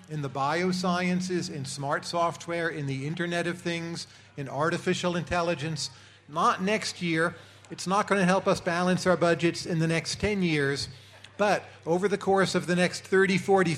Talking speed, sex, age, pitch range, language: 175 wpm, male, 40-59, 150-190 Hz, English